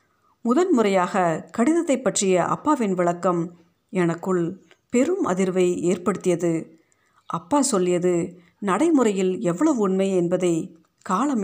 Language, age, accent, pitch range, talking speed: Tamil, 50-69, native, 175-210 Hz, 90 wpm